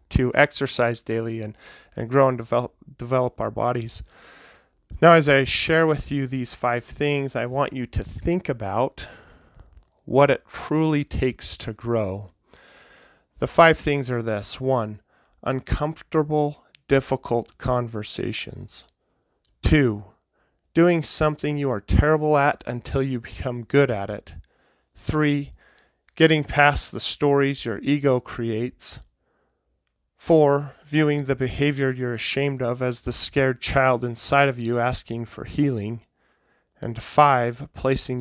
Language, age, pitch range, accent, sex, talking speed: English, 40-59, 115-140 Hz, American, male, 130 wpm